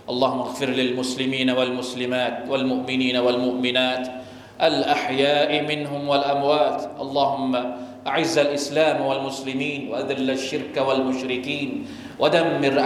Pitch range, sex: 130-145 Hz, male